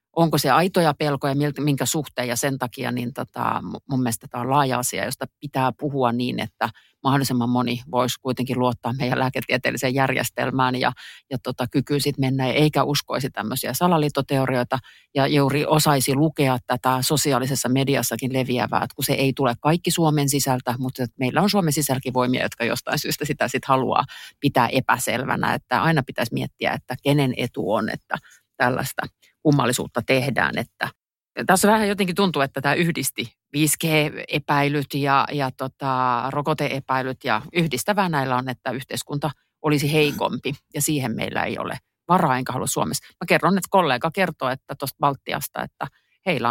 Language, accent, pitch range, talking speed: Finnish, native, 125-150 Hz, 155 wpm